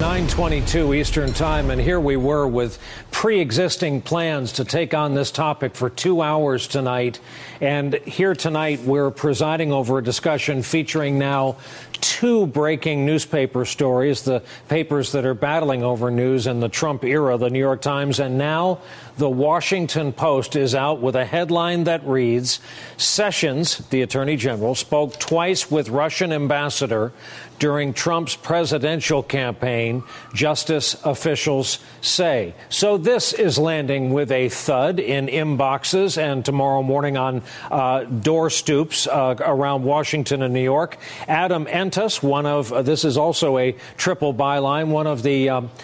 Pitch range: 130-155 Hz